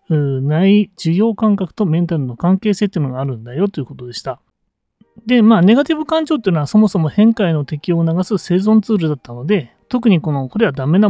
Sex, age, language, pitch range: male, 30-49, Japanese, 150-210 Hz